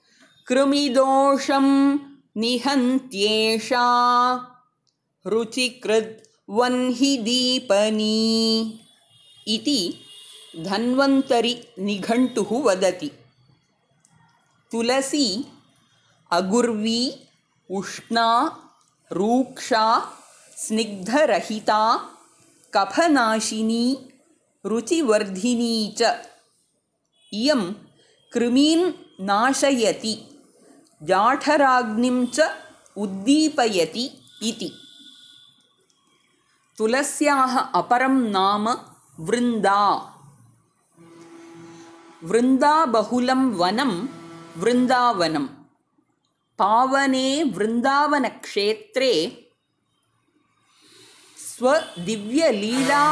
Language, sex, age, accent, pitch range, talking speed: English, female, 30-49, Indian, 200-275 Hz, 45 wpm